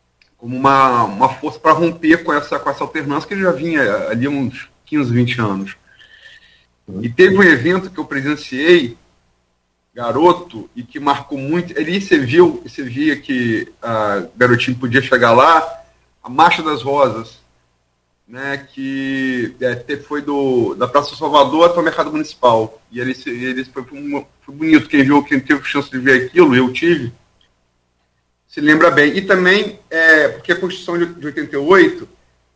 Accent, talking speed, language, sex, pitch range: Brazilian, 155 wpm, Portuguese, male, 115-170 Hz